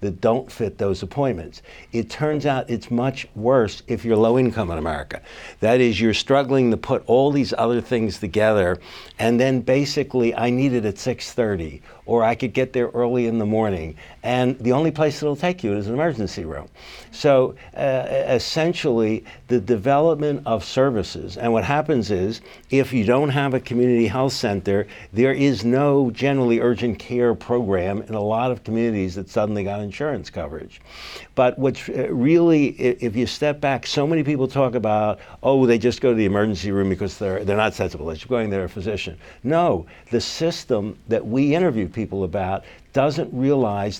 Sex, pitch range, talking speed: male, 105-135 Hz, 180 wpm